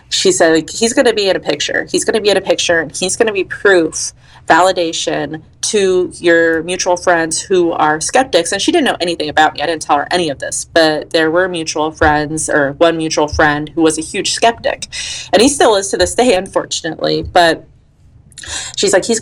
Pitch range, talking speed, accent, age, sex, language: 155-195 Hz, 210 wpm, American, 30-49, female, English